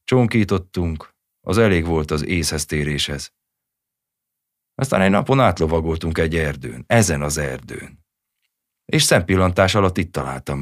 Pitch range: 75-100 Hz